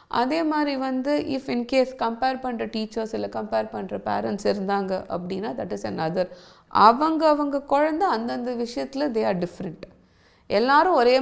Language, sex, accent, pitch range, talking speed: Tamil, female, native, 200-265 Hz, 145 wpm